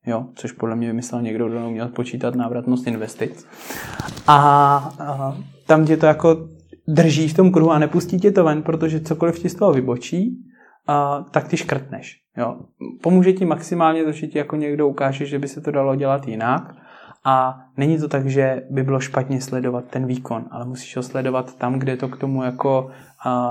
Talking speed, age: 190 wpm, 20-39